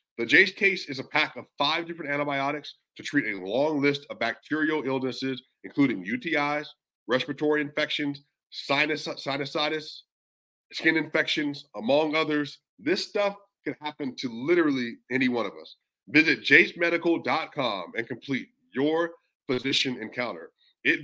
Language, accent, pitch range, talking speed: English, American, 130-160 Hz, 130 wpm